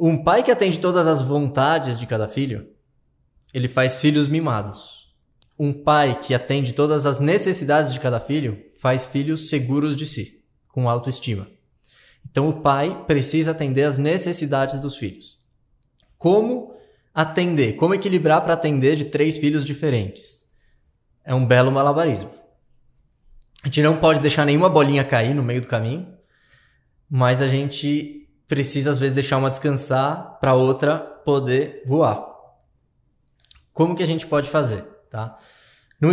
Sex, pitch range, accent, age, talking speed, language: male, 130-155 Hz, Brazilian, 20-39, 145 wpm, Portuguese